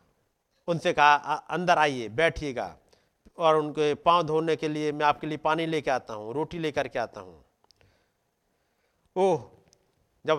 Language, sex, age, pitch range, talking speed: Hindi, male, 50-69, 125-170 Hz, 145 wpm